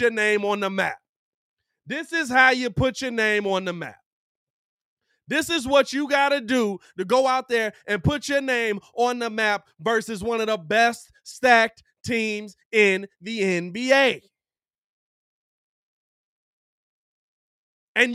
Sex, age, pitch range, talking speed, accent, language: male, 30-49, 235-315 Hz, 145 wpm, American, English